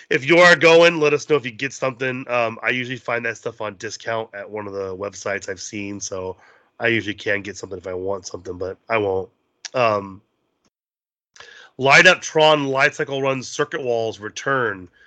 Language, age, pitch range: English, 30-49, 110-140 Hz